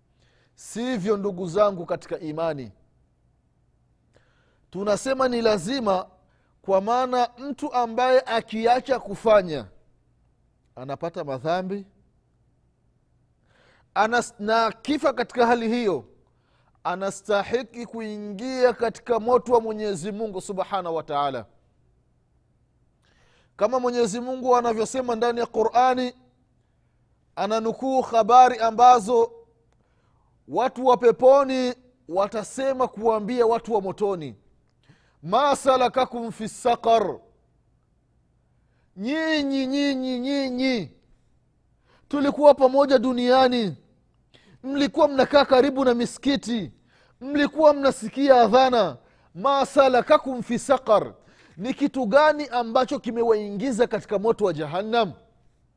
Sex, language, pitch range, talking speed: male, Swahili, 200-260 Hz, 85 wpm